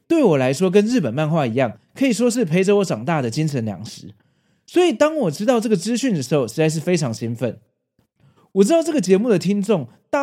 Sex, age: male, 30-49